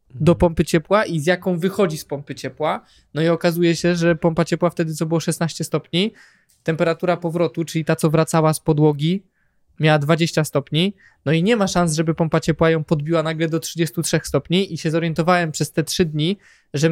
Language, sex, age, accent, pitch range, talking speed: Polish, male, 20-39, native, 160-185 Hz, 195 wpm